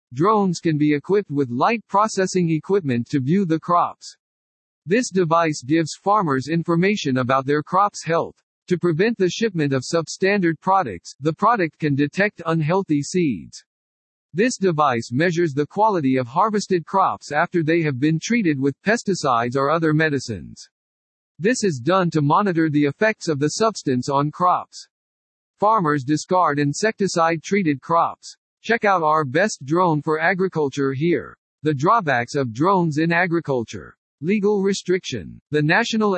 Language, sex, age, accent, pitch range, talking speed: English, male, 50-69, American, 140-190 Hz, 145 wpm